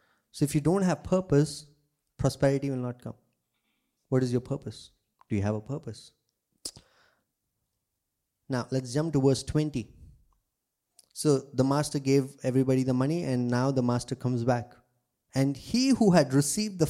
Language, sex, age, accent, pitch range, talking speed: English, male, 20-39, Indian, 125-160 Hz, 155 wpm